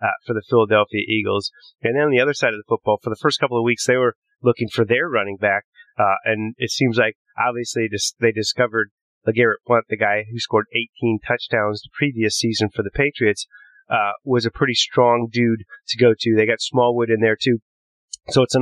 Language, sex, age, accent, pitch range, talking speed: English, male, 30-49, American, 110-130 Hz, 220 wpm